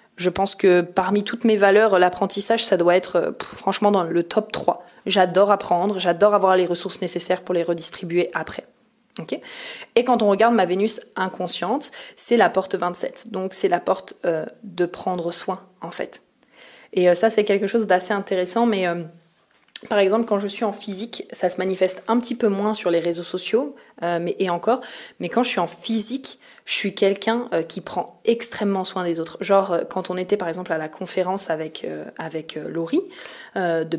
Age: 20-39